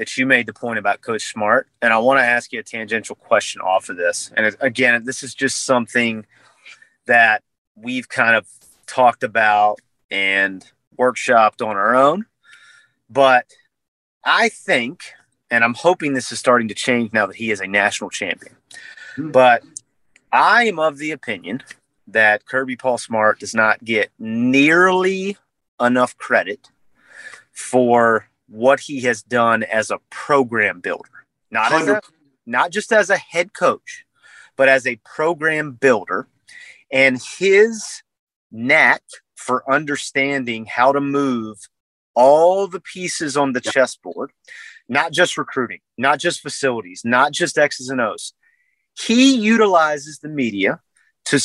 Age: 30-49